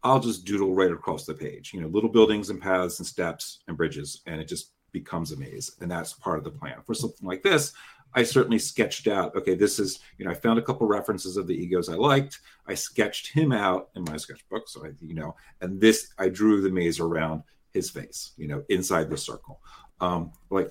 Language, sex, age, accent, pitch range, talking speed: English, male, 40-59, American, 85-110 Hz, 230 wpm